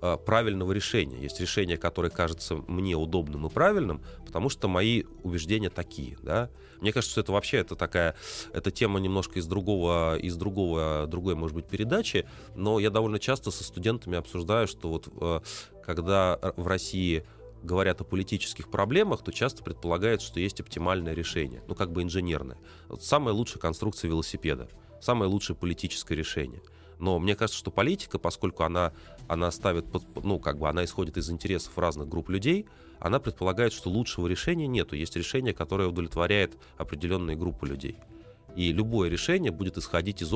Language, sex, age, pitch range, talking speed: Russian, male, 30-49, 85-105 Hz, 160 wpm